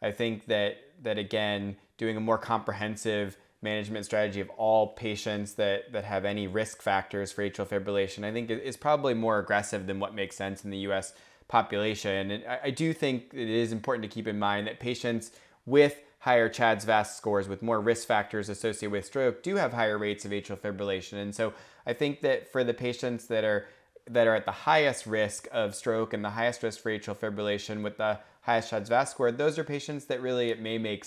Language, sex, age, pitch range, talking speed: English, male, 20-39, 100-125 Hz, 205 wpm